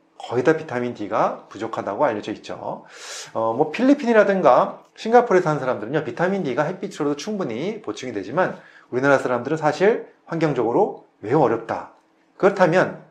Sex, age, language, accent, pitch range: male, 30-49, Korean, native, 115-165 Hz